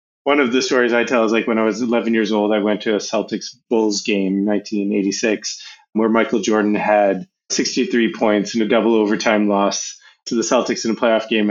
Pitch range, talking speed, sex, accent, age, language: 105-125 Hz, 210 wpm, male, American, 30-49, English